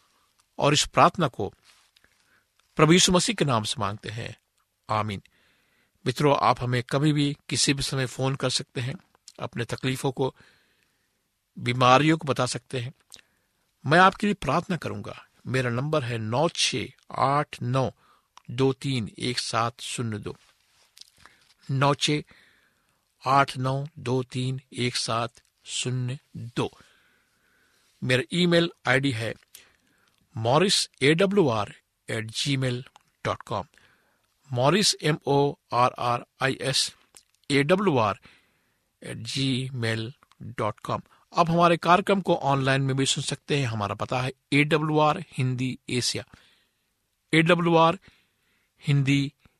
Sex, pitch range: male, 125-155 Hz